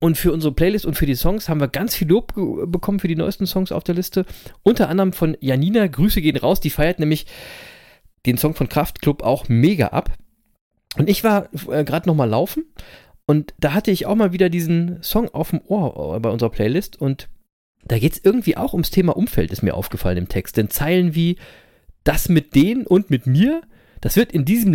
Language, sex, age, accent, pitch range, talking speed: German, male, 40-59, German, 135-190 Hz, 210 wpm